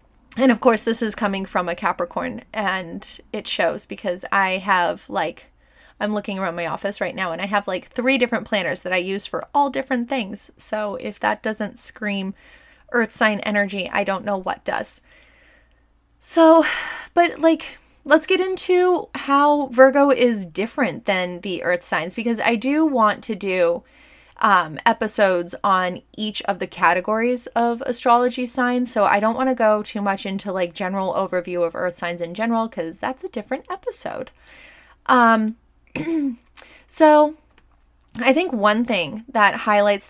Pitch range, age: 195-255 Hz, 20-39